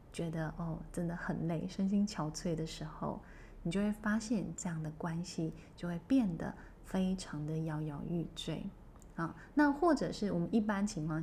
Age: 20-39